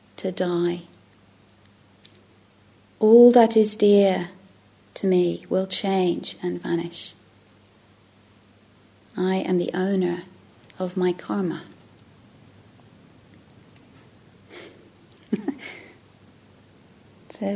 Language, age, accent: English, 40-59, British